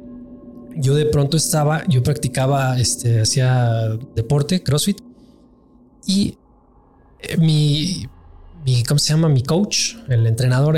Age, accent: 20-39, Mexican